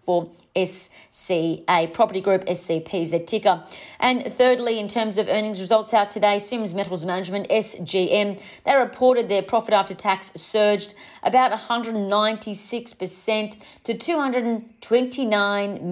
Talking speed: 150 wpm